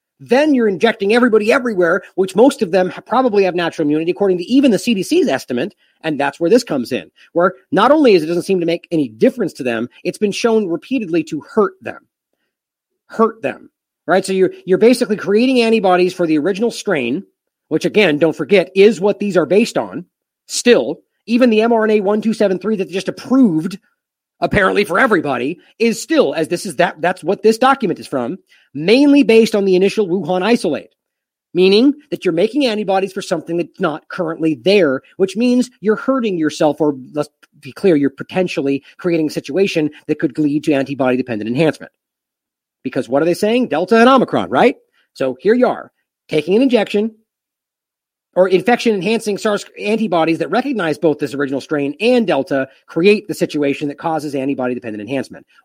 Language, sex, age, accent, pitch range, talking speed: English, male, 40-59, American, 160-230 Hz, 180 wpm